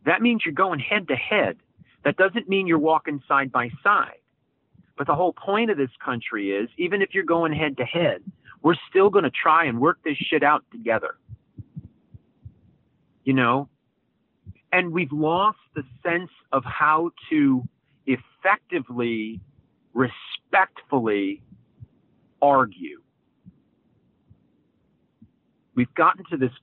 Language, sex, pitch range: English, male, 140-215 Hz